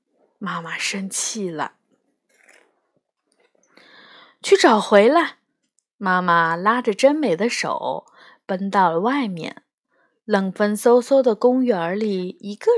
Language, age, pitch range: Chinese, 20-39, 190-255 Hz